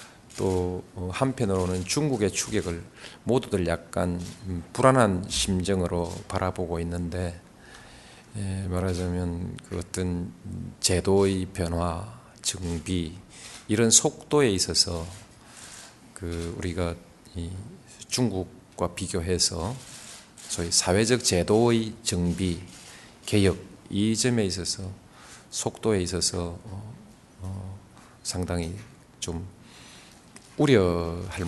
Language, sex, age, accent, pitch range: Korean, male, 40-59, native, 90-115 Hz